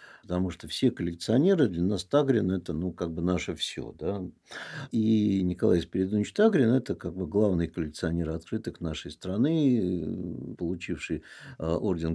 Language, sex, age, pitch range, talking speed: Russian, male, 60-79, 80-120 Hz, 155 wpm